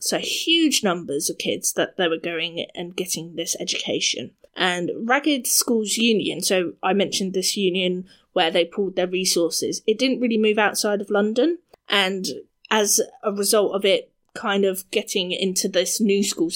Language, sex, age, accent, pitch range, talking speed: English, female, 20-39, British, 185-230 Hz, 170 wpm